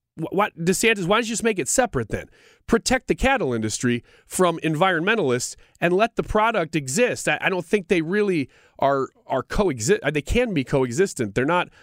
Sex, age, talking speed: male, 30-49, 185 wpm